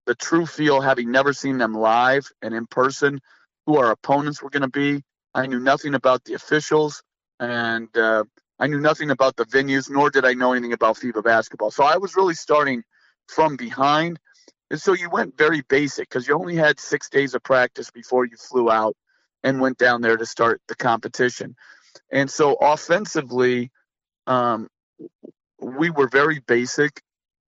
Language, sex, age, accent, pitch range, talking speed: English, male, 40-59, American, 120-145 Hz, 175 wpm